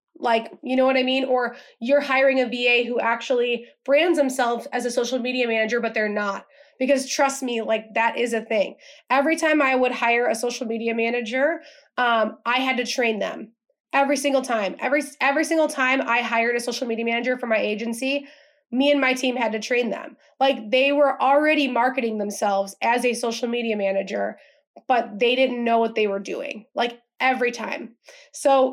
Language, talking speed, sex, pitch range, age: English, 195 wpm, female, 235-280 Hz, 20-39